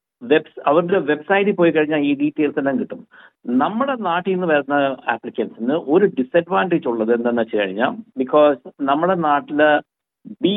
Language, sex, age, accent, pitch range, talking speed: Malayalam, male, 60-79, native, 145-200 Hz, 135 wpm